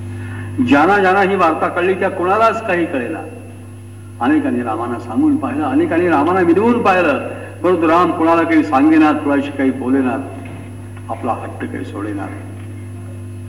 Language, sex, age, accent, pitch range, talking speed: Marathi, male, 70-89, native, 105-145 Hz, 135 wpm